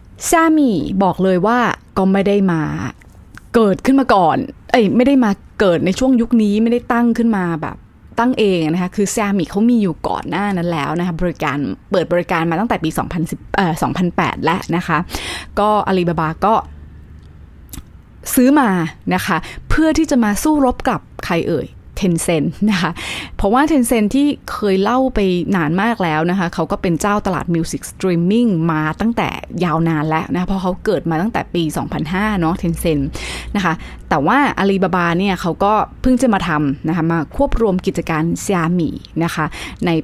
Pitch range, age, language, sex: 165-215 Hz, 20-39, Thai, female